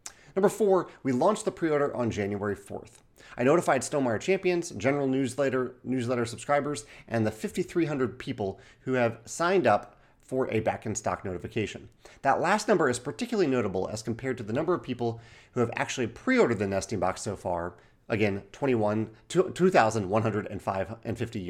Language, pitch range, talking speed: English, 110-145 Hz, 150 wpm